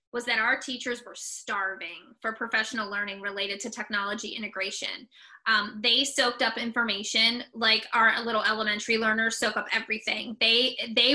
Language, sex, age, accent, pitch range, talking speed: English, female, 20-39, American, 220-255 Hz, 150 wpm